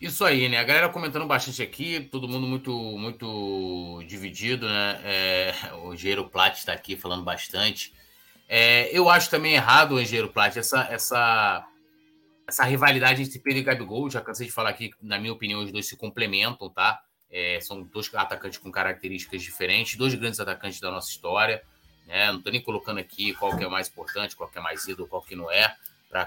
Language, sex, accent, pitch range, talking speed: Portuguese, male, Brazilian, 110-165 Hz, 195 wpm